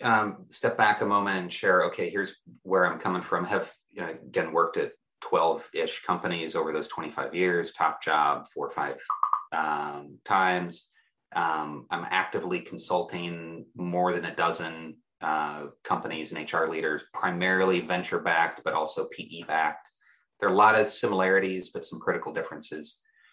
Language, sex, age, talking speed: English, male, 30-49, 155 wpm